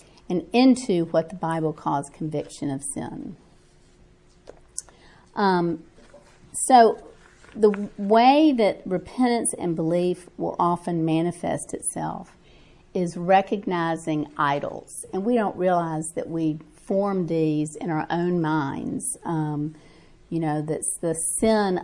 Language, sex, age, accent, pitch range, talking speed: English, female, 50-69, American, 165-205 Hz, 115 wpm